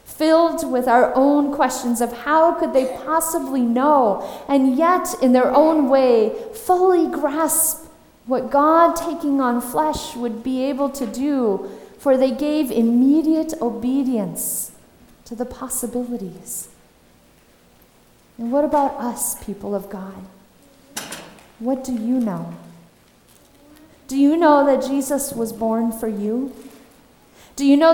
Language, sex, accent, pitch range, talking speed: English, female, American, 230-290 Hz, 130 wpm